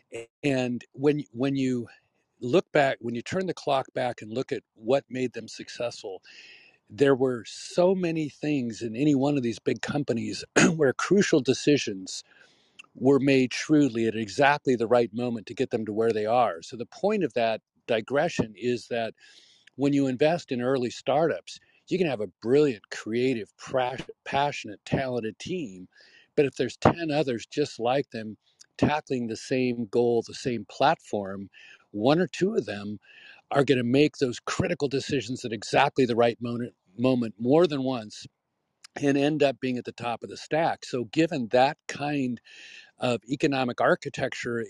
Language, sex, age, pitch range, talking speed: English, male, 50-69, 115-145 Hz, 170 wpm